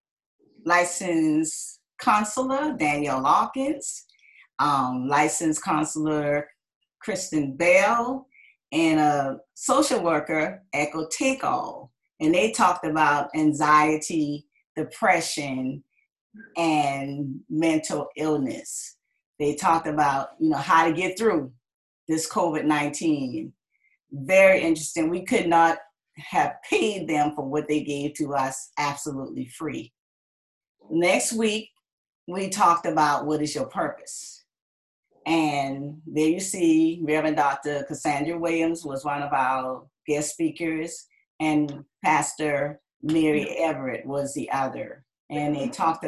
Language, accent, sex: English, American, female